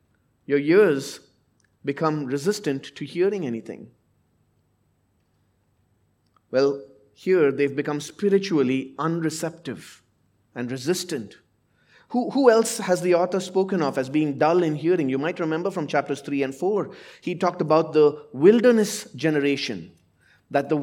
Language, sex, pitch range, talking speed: English, male, 135-190 Hz, 125 wpm